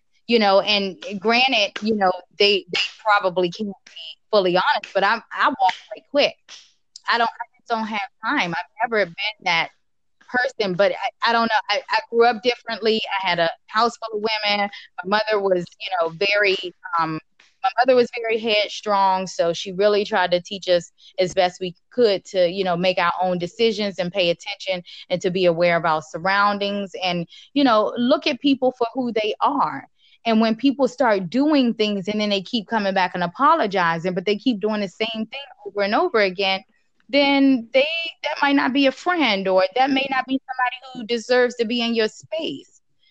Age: 20-39